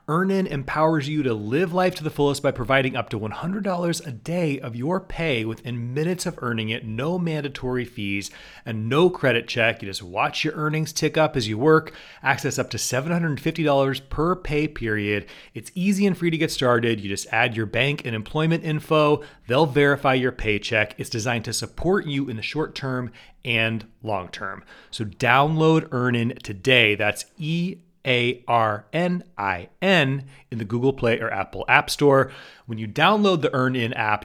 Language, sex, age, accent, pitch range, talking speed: English, male, 30-49, American, 110-150 Hz, 185 wpm